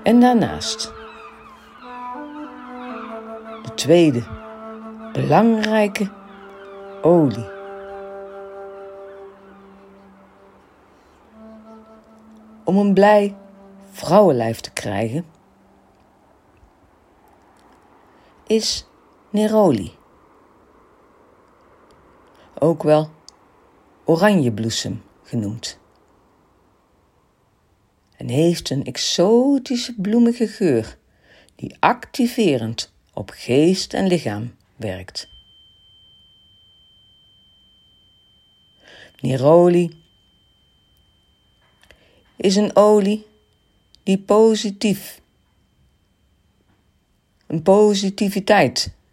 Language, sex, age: Dutch, female, 60-79